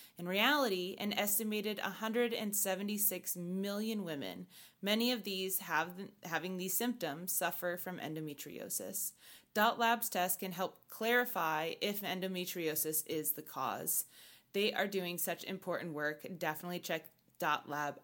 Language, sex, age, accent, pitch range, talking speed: English, female, 20-39, American, 175-215 Hz, 125 wpm